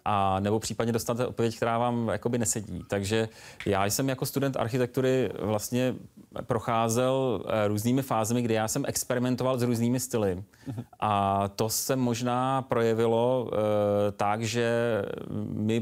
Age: 30-49